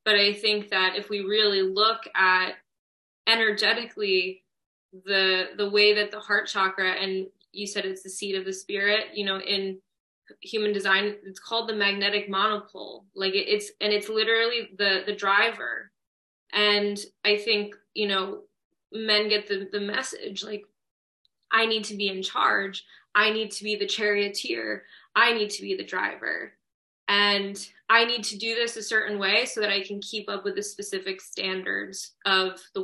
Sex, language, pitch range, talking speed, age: female, English, 200-220 Hz, 170 wpm, 20-39